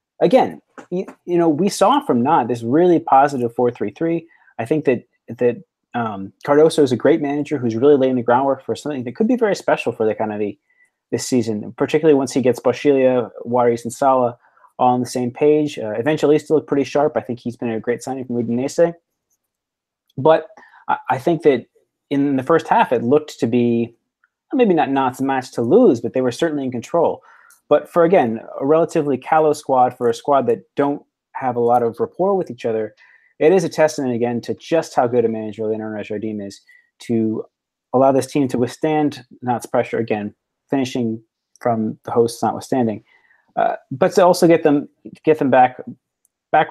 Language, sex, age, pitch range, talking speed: English, male, 20-39, 120-155 Hz, 195 wpm